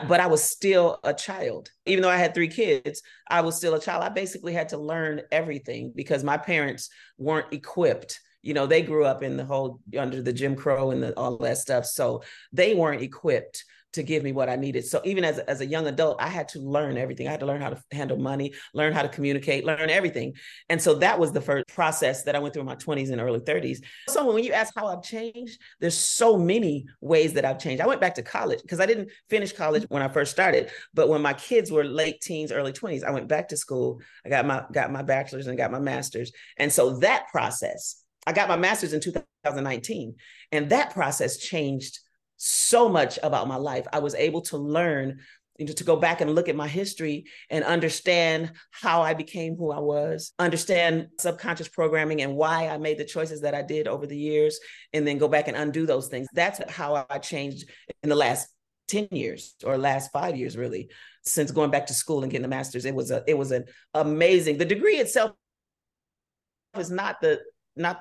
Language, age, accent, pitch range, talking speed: English, 40-59, American, 140-175 Hz, 220 wpm